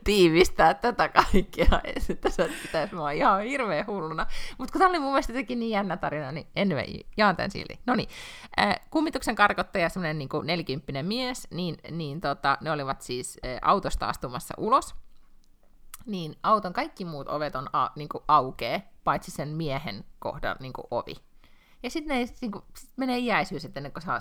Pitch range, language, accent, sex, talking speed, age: 135-210 Hz, Finnish, native, female, 160 wpm, 30-49